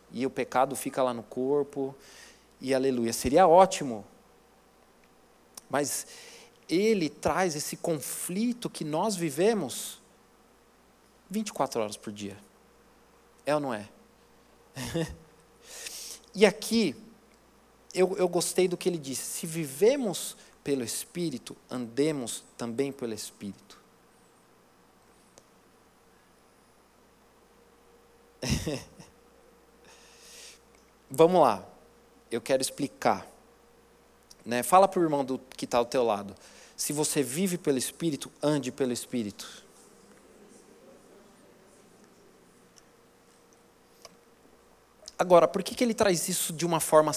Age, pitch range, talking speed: 40-59, 130-185 Hz, 100 wpm